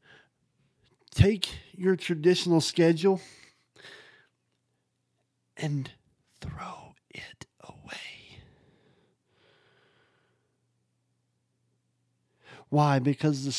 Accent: American